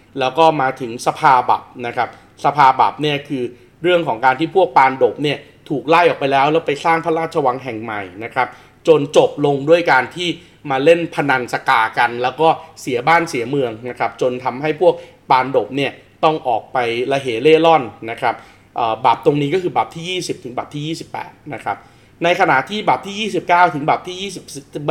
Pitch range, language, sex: 130-170 Hz, Thai, male